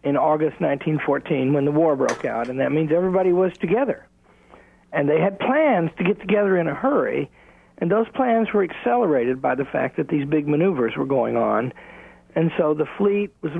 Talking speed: 195 wpm